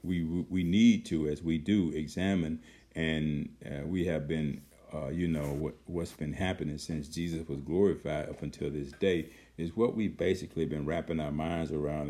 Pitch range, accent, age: 75-85 Hz, American, 50-69